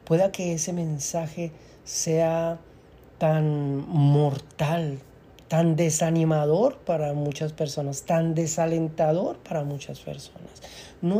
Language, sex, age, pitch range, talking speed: Spanish, male, 40-59, 140-165 Hz, 95 wpm